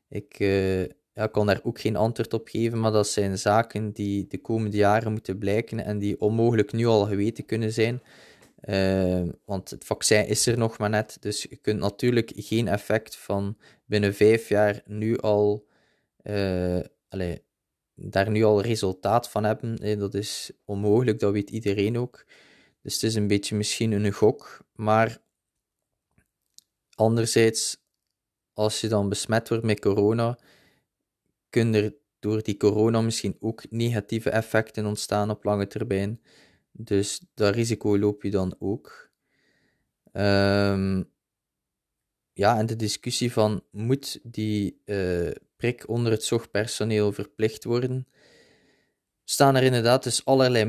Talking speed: 145 wpm